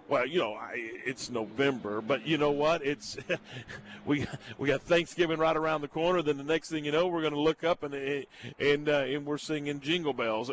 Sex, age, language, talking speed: male, 50-69, English, 220 wpm